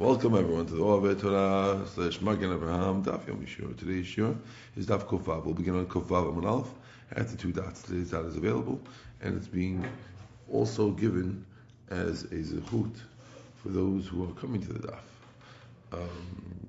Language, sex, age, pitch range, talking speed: English, male, 50-69, 90-120 Hz, 175 wpm